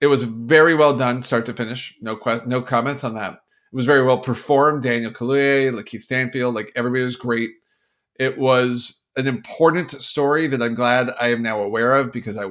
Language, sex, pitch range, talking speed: English, male, 125-175 Hz, 200 wpm